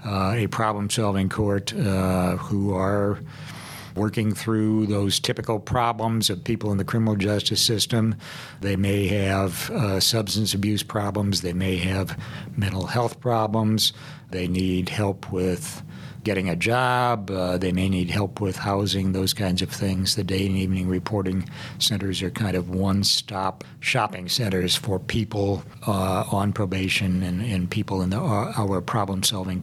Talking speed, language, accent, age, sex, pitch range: 150 wpm, English, American, 60-79, male, 95-110 Hz